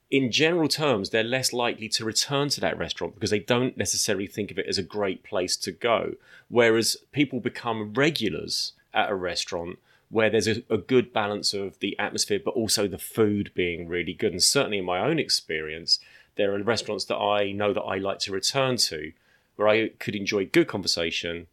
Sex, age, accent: male, 30-49, British